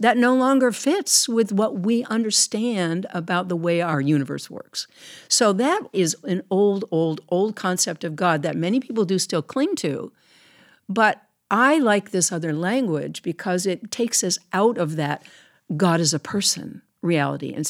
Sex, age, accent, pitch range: female, 60-79, American, 165-225 Hz